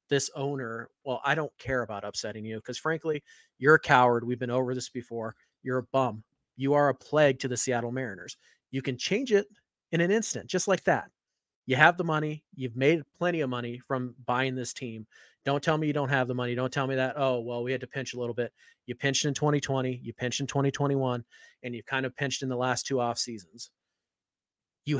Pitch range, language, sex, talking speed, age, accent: 125-155 Hz, English, male, 225 wpm, 30-49, American